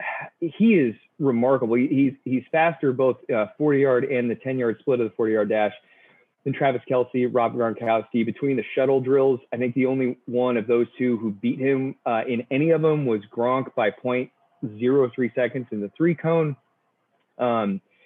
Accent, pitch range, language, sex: American, 120-155 Hz, English, male